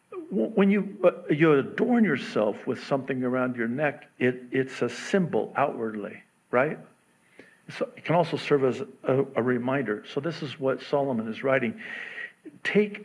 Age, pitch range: 60-79, 120-195 Hz